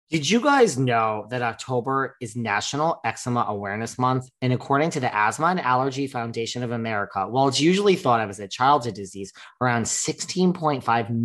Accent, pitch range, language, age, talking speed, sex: American, 115-150 Hz, English, 30-49, 170 wpm, male